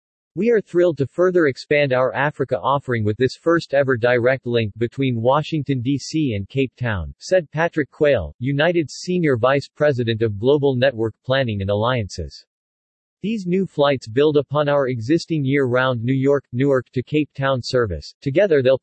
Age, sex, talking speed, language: 40-59, male, 160 wpm, English